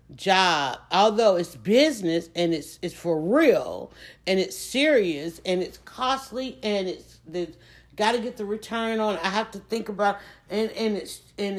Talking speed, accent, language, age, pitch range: 170 wpm, American, English, 50-69, 180-225 Hz